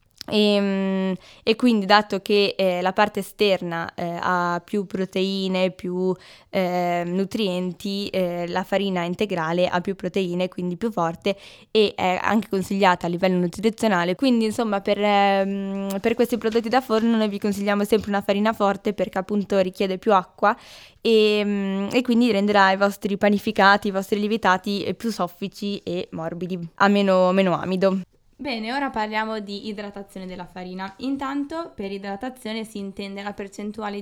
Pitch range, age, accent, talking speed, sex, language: 190-215 Hz, 10-29, native, 155 wpm, female, Italian